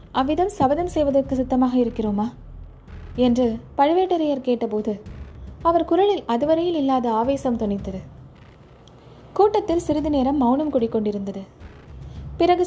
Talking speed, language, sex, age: 95 wpm, Tamil, female, 20-39